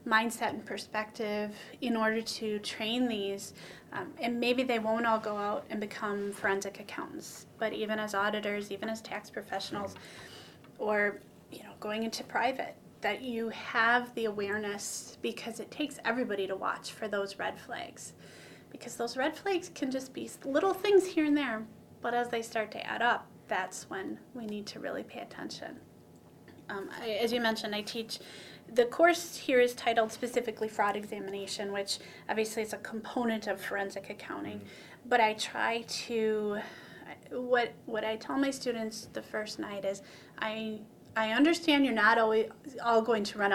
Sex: female